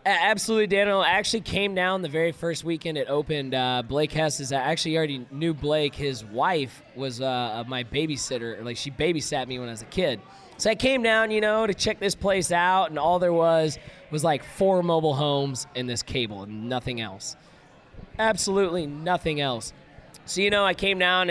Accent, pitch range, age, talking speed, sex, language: American, 140-195 Hz, 20-39, 205 wpm, male, English